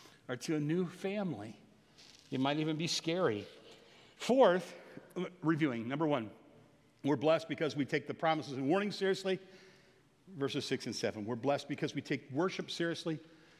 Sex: male